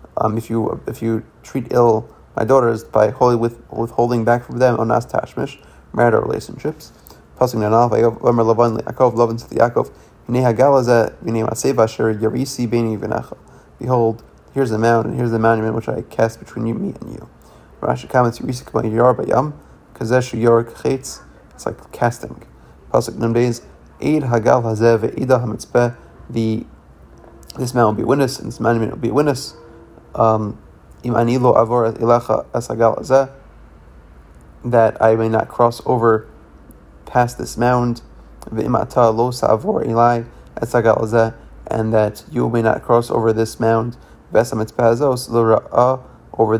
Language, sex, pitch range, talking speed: English, male, 110-120 Hz, 110 wpm